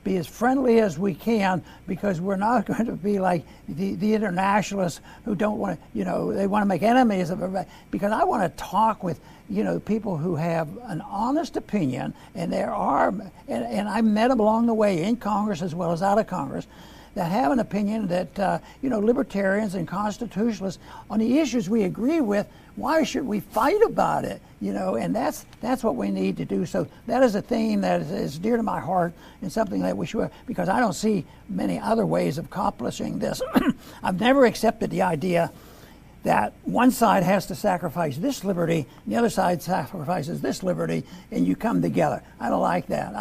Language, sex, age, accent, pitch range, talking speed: English, male, 60-79, American, 180-225 Hz, 205 wpm